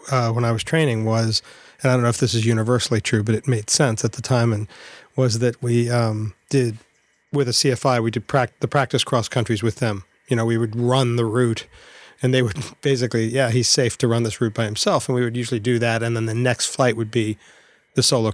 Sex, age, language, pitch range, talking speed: male, 40-59, English, 115-135 Hz, 240 wpm